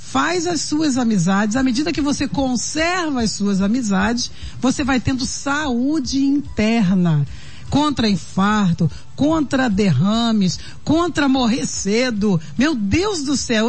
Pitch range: 195-280 Hz